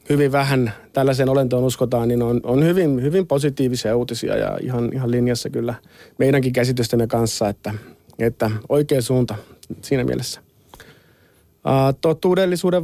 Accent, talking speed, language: native, 130 wpm, Finnish